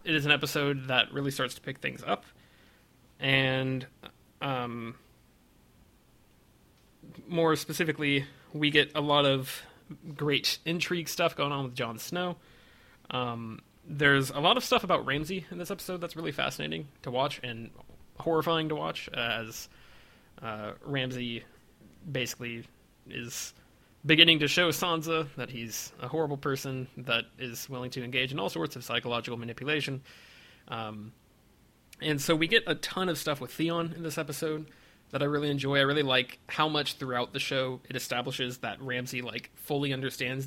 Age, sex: 20-39, male